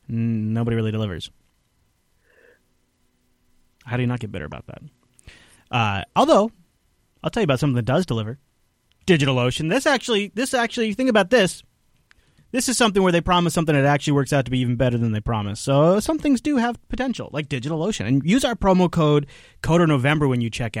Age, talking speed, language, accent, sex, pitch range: 30-49, 190 wpm, English, American, male, 120-185 Hz